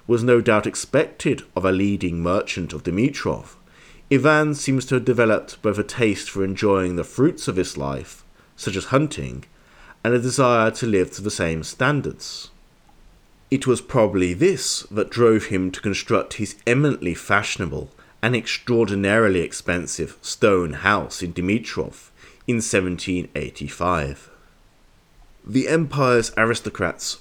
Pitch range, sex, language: 90-120 Hz, male, English